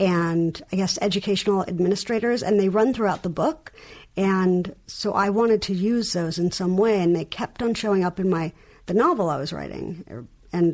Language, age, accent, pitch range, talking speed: English, 50-69, American, 165-200 Hz, 195 wpm